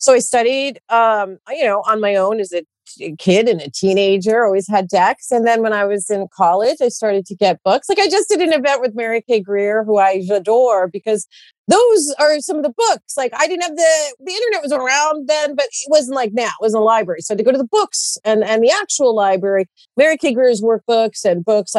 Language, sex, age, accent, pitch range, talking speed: English, female, 40-59, American, 200-275 Hz, 245 wpm